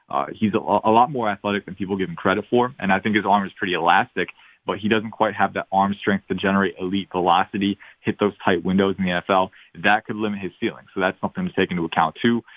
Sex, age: male, 20-39